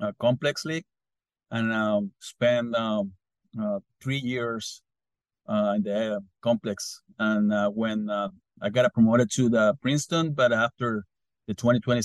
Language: English